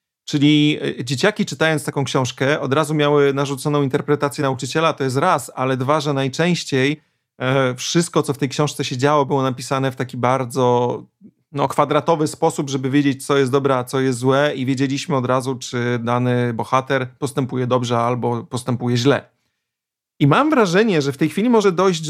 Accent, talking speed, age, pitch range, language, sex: native, 170 wpm, 30-49, 130-170 Hz, Polish, male